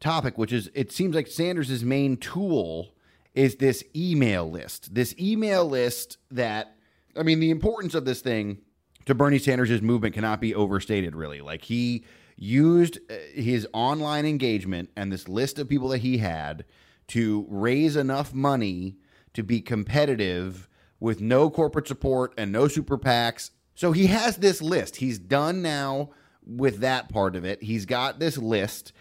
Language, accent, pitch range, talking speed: English, American, 105-135 Hz, 160 wpm